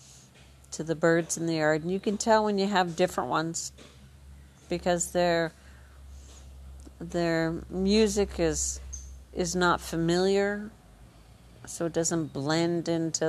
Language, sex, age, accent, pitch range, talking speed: English, female, 50-69, American, 130-175 Hz, 125 wpm